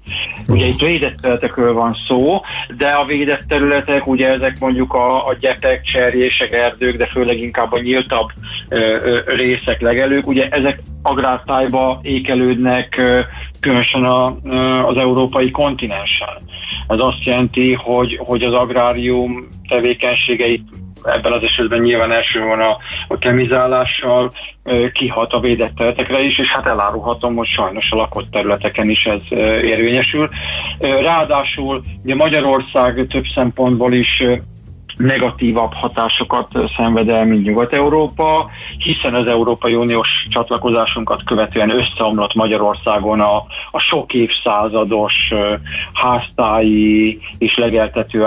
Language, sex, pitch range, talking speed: Hungarian, male, 110-130 Hz, 125 wpm